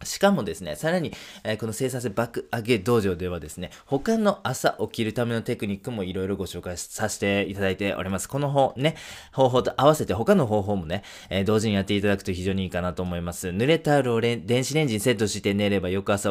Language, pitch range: Japanese, 95-115 Hz